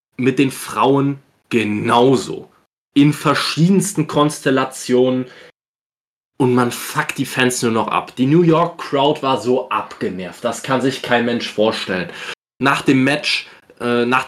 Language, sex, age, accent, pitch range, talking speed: German, male, 20-39, German, 120-150 Hz, 140 wpm